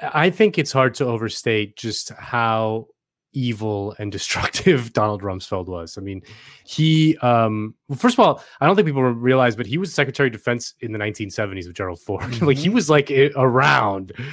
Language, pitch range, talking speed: English, 105-140 Hz, 180 wpm